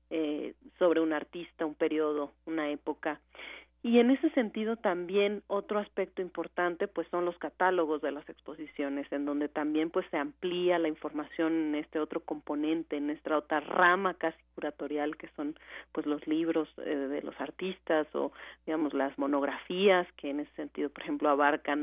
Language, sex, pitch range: Spanish, female, 150-180 Hz